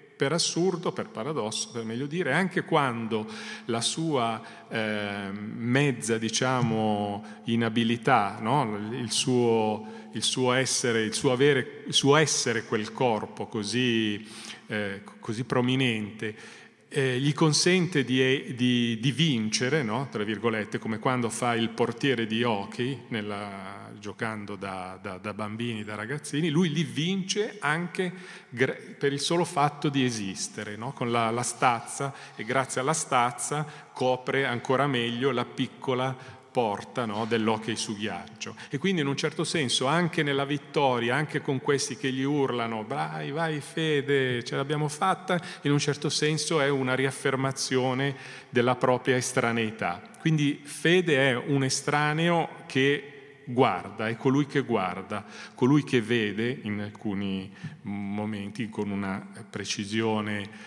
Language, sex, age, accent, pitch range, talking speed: Italian, male, 40-59, native, 110-145 Hz, 135 wpm